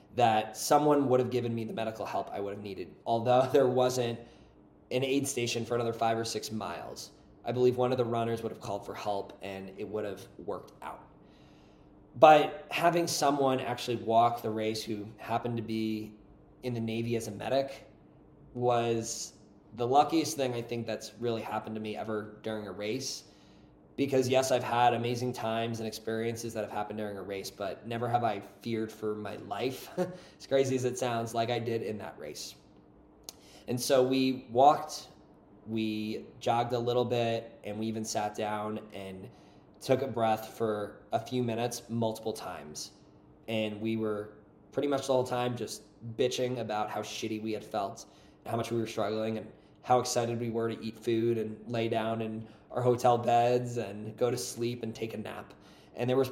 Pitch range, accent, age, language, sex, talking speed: 110-125 Hz, American, 20-39, English, male, 190 wpm